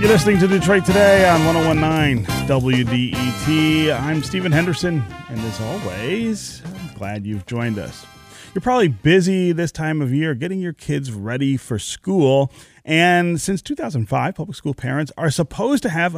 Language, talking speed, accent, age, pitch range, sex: English, 155 wpm, American, 30-49, 115-170 Hz, male